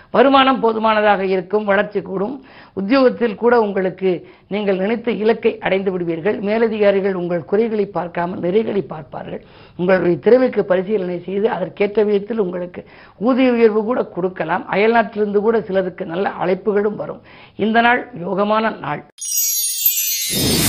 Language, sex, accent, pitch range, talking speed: Tamil, female, native, 185-220 Hz, 115 wpm